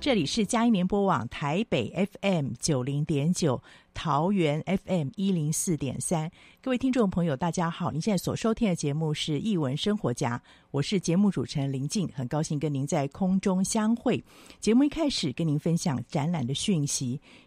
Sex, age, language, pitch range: female, 50-69, Chinese, 145-200 Hz